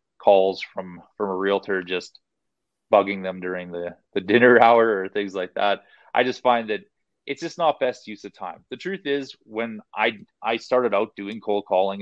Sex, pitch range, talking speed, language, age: male, 100-125 Hz, 195 wpm, English, 30-49